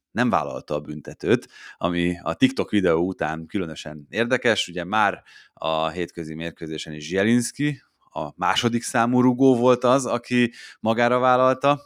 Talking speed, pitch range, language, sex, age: 135 wpm, 85-110 Hz, Hungarian, male, 30-49